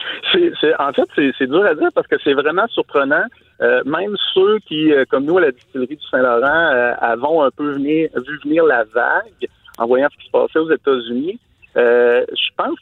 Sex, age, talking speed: male, 50-69, 185 wpm